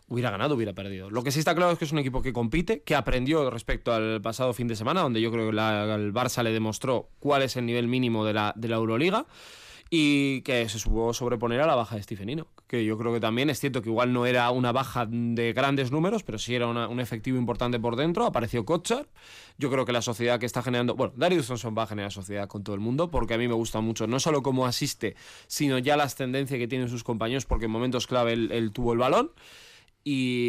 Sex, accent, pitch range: male, Spanish, 115-150 Hz